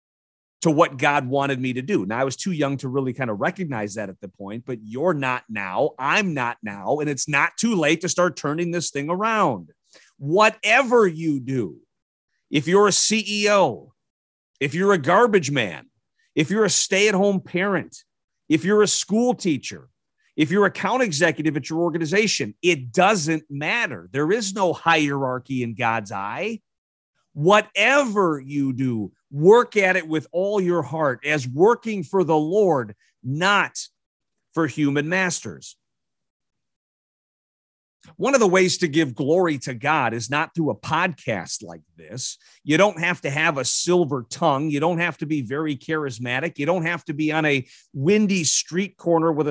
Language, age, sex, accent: English, 40-59, male, American